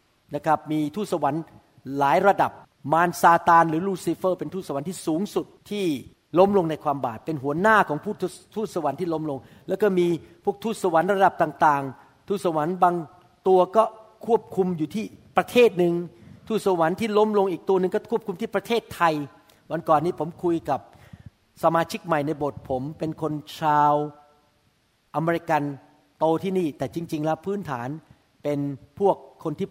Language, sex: Thai, male